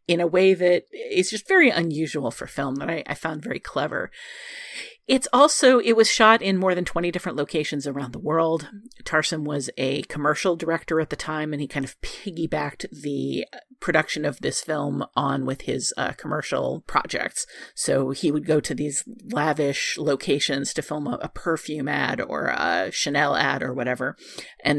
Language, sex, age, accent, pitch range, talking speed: English, female, 40-59, American, 145-195 Hz, 180 wpm